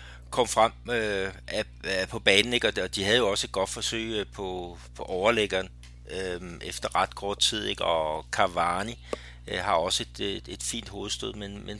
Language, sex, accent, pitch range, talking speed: Danish, male, native, 75-110 Hz, 180 wpm